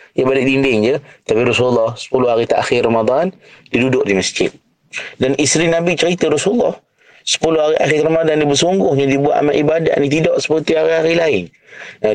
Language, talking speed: Malay, 180 wpm